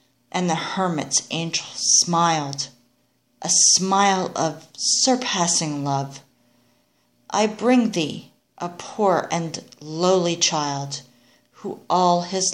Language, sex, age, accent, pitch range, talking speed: English, female, 40-59, American, 135-175 Hz, 100 wpm